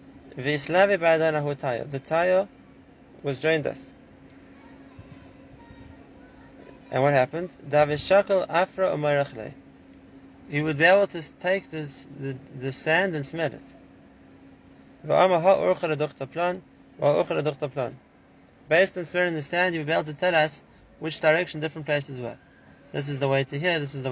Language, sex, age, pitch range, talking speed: English, male, 20-39, 140-175 Hz, 115 wpm